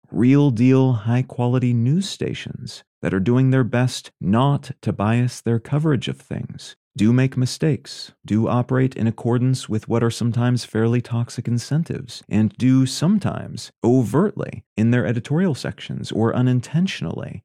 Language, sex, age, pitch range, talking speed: English, male, 30-49, 115-135 Hz, 140 wpm